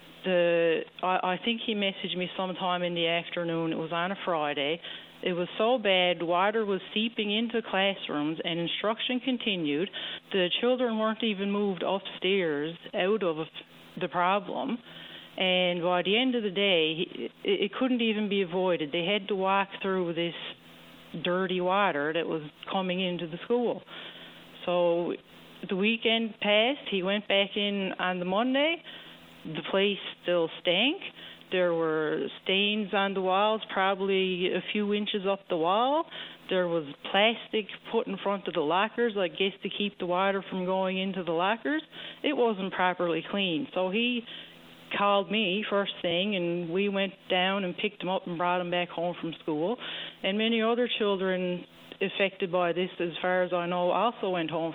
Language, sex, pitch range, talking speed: English, female, 175-210 Hz, 165 wpm